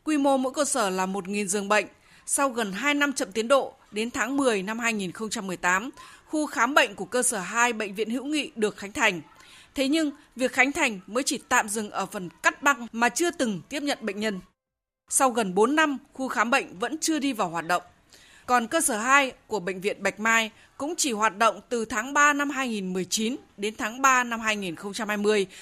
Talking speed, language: 215 wpm, Vietnamese